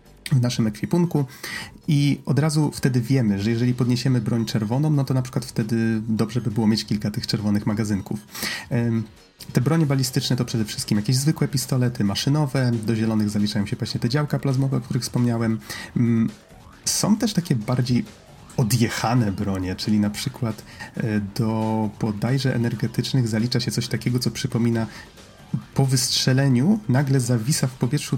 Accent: native